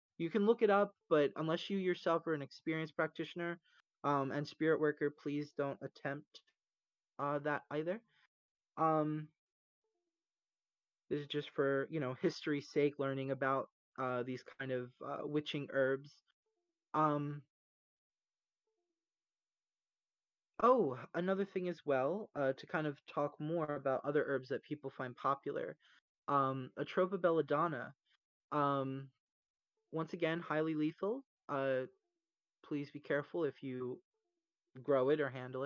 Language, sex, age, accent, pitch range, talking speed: English, male, 20-39, American, 135-170 Hz, 130 wpm